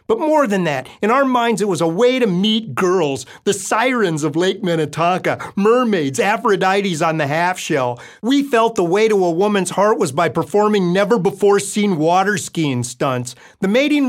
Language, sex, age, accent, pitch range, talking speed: English, male, 40-59, American, 150-210 Hz, 180 wpm